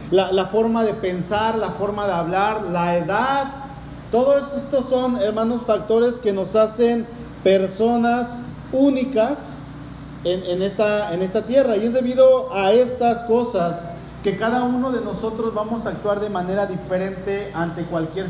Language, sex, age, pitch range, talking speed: Spanish, male, 40-59, 190-235 Hz, 150 wpm